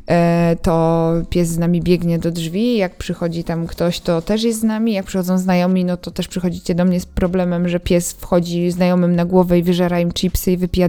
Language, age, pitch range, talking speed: Polish, 20-39, 175-215 Hz, 215 wpm